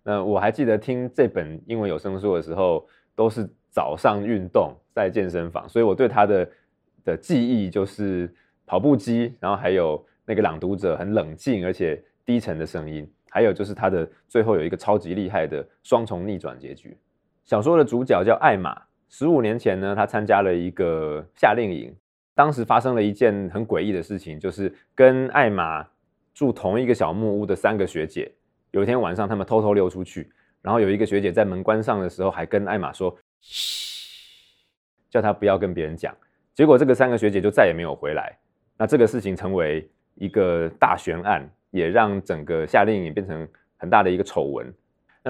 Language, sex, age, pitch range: Chinese, male, 20-39, 90-115 Hz